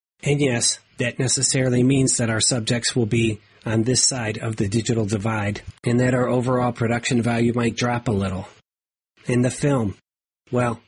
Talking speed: 170 wpm